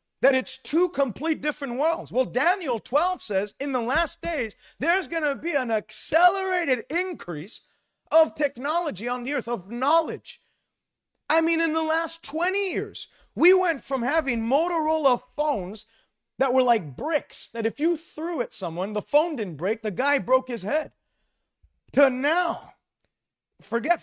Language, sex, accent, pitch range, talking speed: English, male, American, 220-295 Hz, 155 wpm